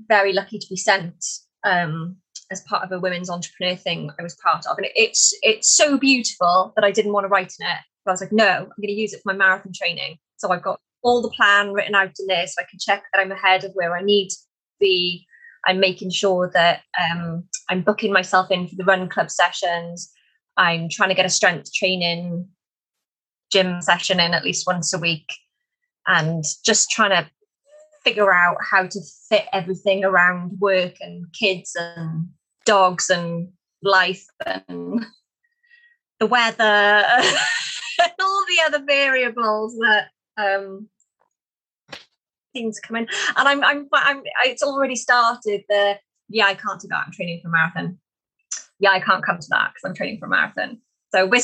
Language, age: English, 20-39